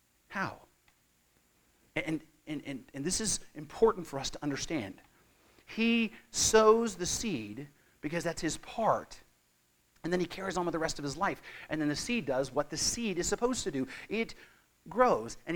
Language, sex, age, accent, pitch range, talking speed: English, male, 40-59, American, 155-230 Hz, 175 wpm